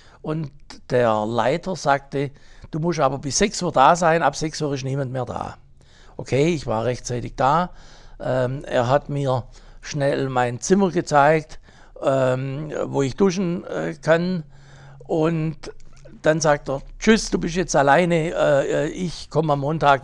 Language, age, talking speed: German, 60-79, 155 wpm